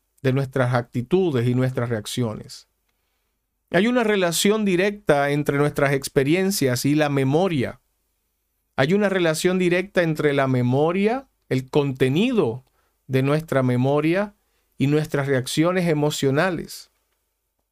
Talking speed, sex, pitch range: 110 wpm, male, 125-180 Hz